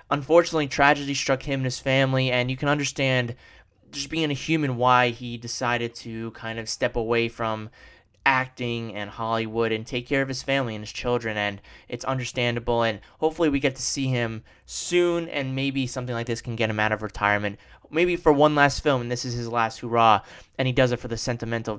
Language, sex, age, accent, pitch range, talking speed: English, male, 20-39, American, 115-145 Hz, 210 wpm